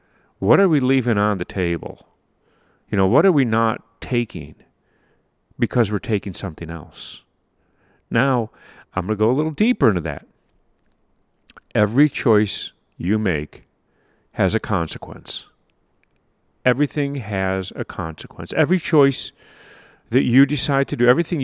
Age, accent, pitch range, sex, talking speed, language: 50-69, American, 100-140 Hz, male, 135 wpm, English